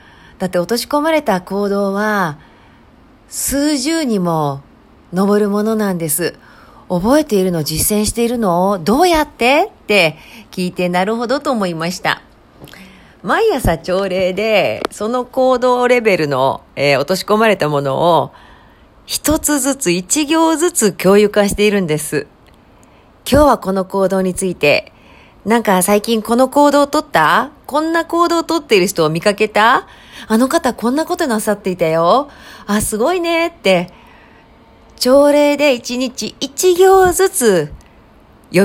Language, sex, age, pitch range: Japanese, female, 40-59, 185-260 Hz